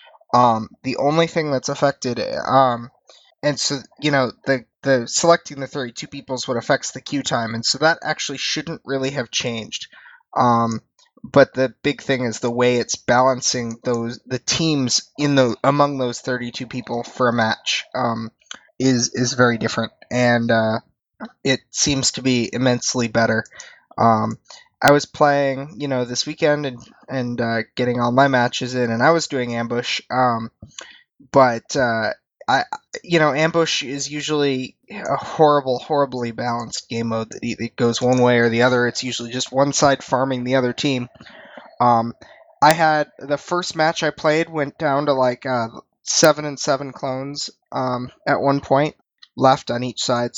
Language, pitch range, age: English, 120-145 Hz, 20-39